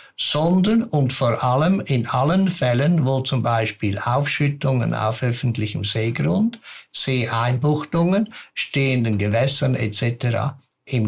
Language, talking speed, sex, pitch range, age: German, 105 wpm, male, 120-155 Hz, 60-79